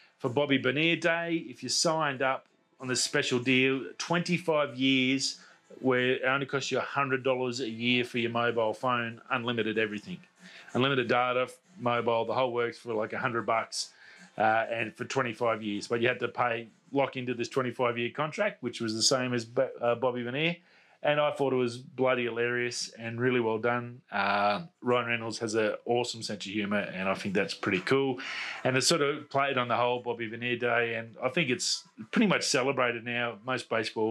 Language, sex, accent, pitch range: English, male, Australian, 120-145 Hz